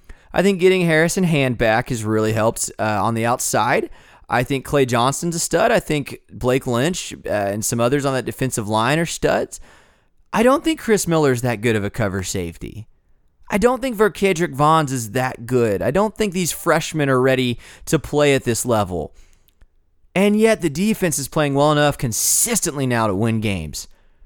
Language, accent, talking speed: English, American, 190 wpm